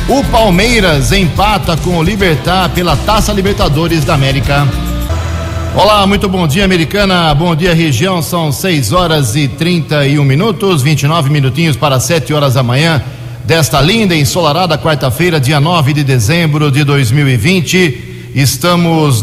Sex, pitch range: male, 125-160 Hz